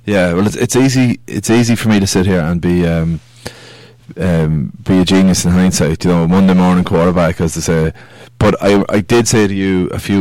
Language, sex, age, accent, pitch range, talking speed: English, male, 20-39, Irish, 90-110 Hz, 225 wpm